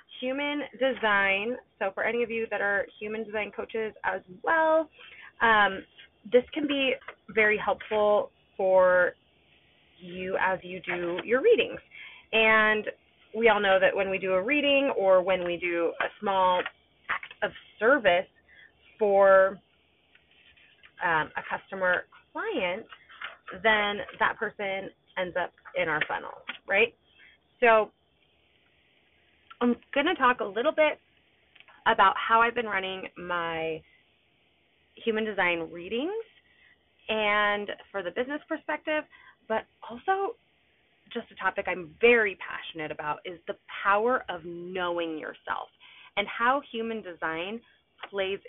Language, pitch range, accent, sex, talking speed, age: English, 185-245 Hz, American, female, 125 wpm, 20-39